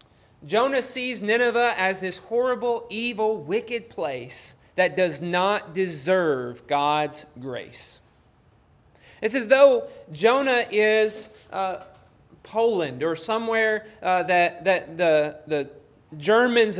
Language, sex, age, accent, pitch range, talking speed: English, male, 30-49, American, 165-225 Hz, 105 wpm